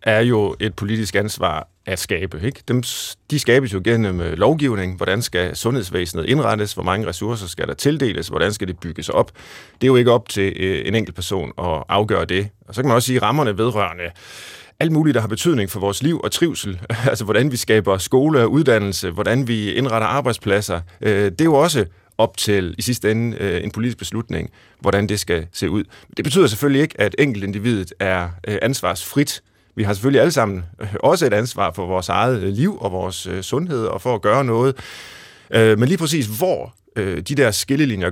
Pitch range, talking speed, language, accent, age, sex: 95-125 Hz, 190 wpm, Danish, native, 30-49, male